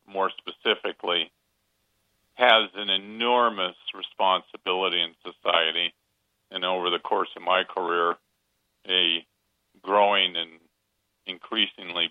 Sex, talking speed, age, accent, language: male, 95 wpm, 50-69, American, English